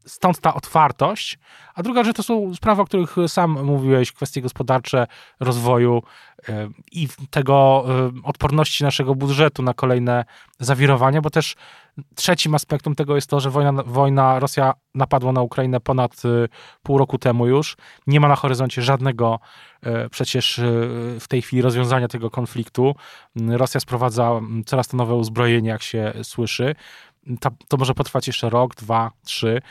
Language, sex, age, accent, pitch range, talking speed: Polish, male, 20-39, native, 125-155 Hz, 145 wpm